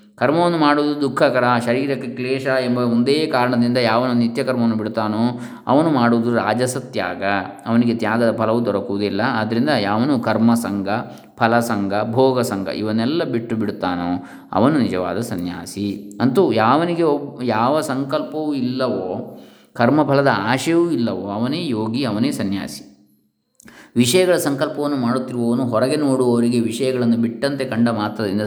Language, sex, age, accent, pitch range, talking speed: Kannada, male, 20-39, native, 110-135 Hz, 115 wpm